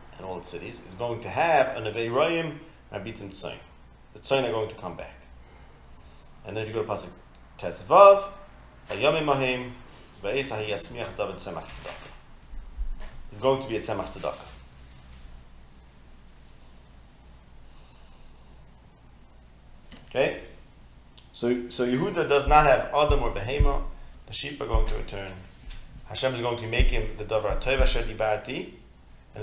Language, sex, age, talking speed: English, male, 30-49, 140 wpm